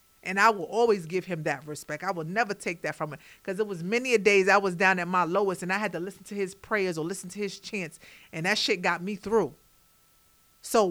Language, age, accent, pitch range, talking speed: English, 40-59, American, 180-225 Hz, 260 wpm